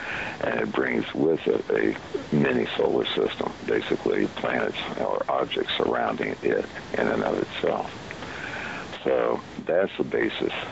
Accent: American